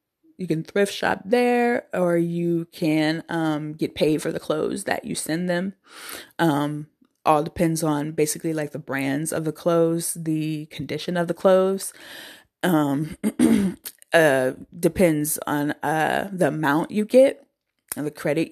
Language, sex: English, female